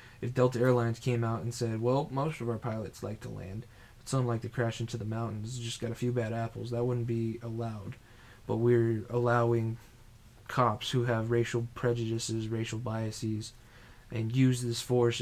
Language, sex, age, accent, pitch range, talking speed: English, male, 20-39, American, 115-120 Hz, 185 wpm